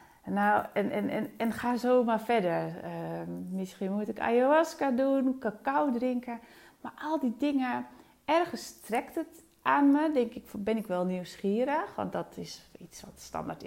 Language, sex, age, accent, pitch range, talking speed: Dutch, female, 30-49, Dutch, 170-230 Hz, 165 wpm